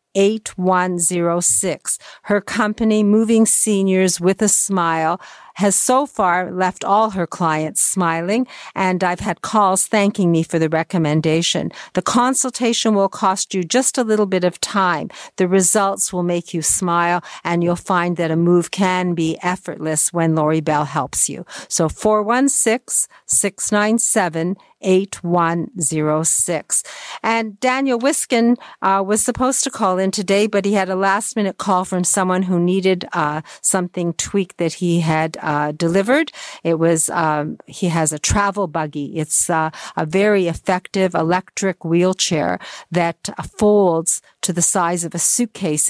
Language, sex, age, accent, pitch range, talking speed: English, female, 50-69, American, 170-210 Hz, 145 wpm